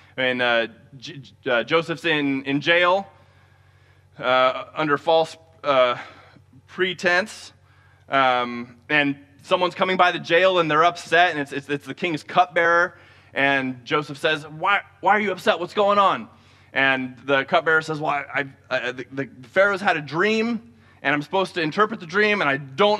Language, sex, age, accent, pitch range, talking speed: English, male, 20-39, American, 125-180 Hz, 170 wpm